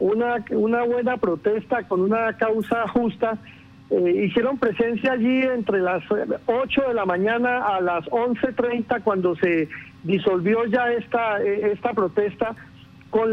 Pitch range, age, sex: 215-260 Hz, 50-69, male